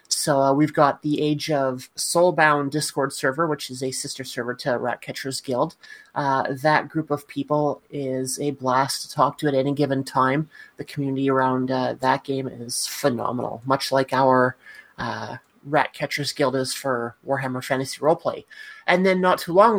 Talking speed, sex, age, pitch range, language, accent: 175 wpm, male, 30-49, 135-155 Hz, English, American